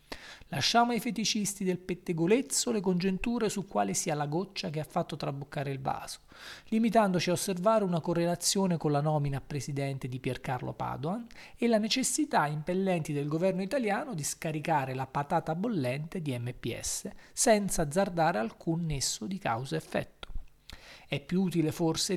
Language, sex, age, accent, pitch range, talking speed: Italian, male, 40-59, native, 150-215 Hz, 150 wpm